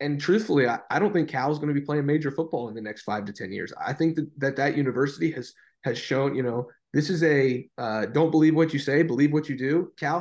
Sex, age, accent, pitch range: male, 20-39, American, 130-155 Hz